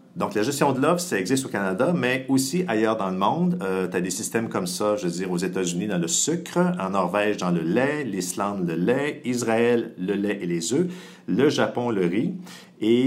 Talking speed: 225 wpm